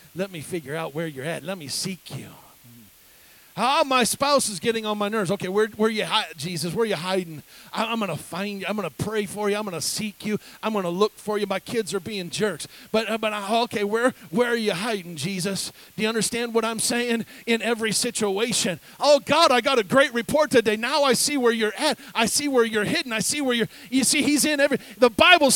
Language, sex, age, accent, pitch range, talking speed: English, male, 40-59, American, 195-290 Hz, 245 wpm